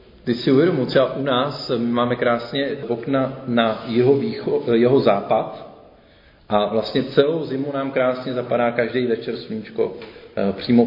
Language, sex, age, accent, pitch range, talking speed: Czech, male, 40-59, native, 115-150 Hz, 140 wpm